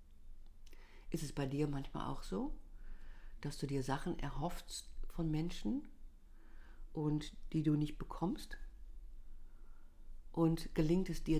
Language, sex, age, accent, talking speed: German, female, 50-69, German, 120 wpm